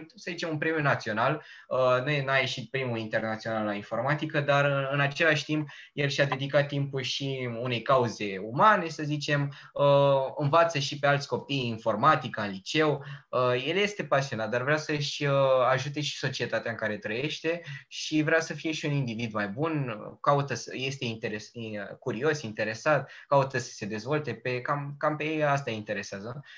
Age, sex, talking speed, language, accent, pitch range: 20-39, male, 160 wpm, Romanian, native, 120-150 Hz